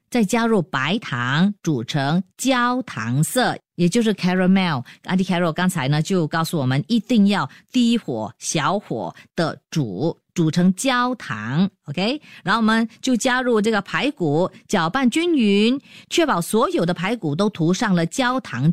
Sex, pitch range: female, 170-245 Hz